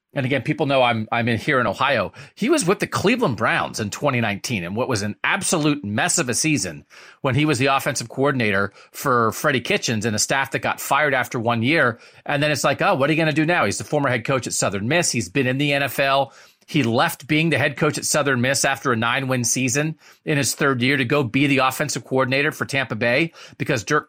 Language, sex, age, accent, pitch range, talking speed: English, male, 40-59, American, 125-155 Hz, 245 wpm